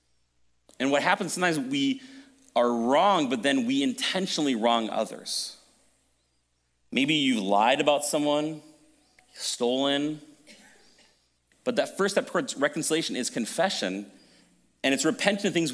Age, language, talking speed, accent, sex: 40-59, English, 120 wpm, American, male